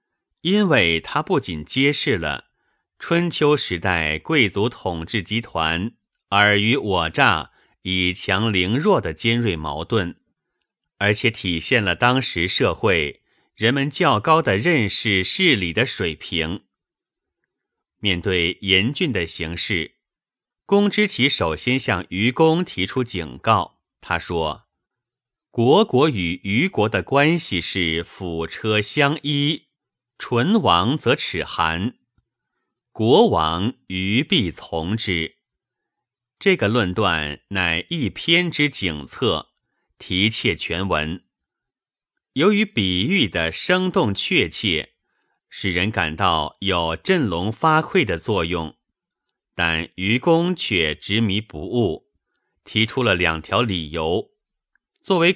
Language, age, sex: Chinese, 30-49, male